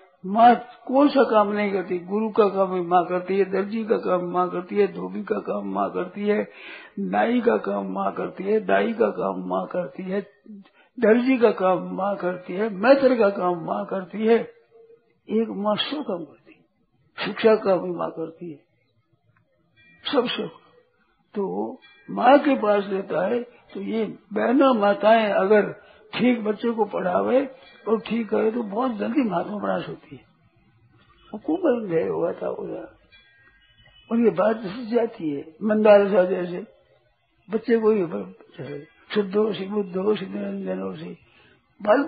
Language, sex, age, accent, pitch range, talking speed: Hindi, male, 60-79, native, 180-230 Hz, 155 wpm